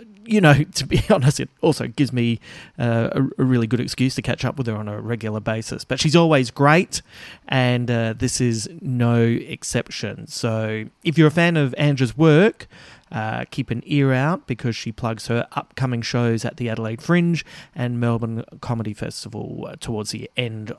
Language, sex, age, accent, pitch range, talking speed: English, male, 30-49, Australian, 120-155 Hz, 180 wpm